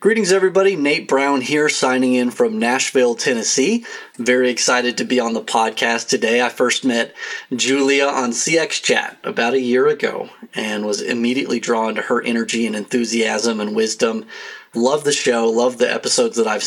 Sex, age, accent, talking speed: male, 30-49, American, 175 wpm